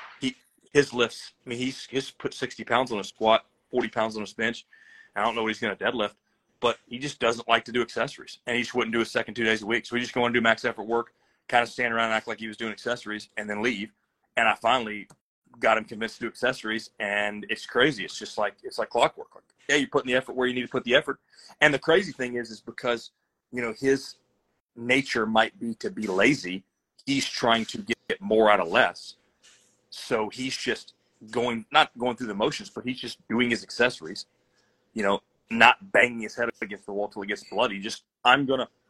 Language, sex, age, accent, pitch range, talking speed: English, male, 30-49, American, 110-125 Hz, 235 wpm